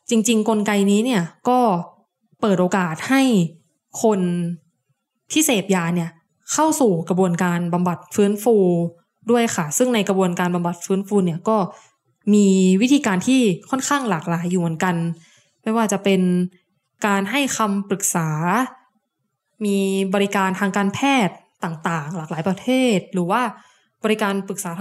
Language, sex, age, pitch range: Thai, female, 10-29, 180-225 Hz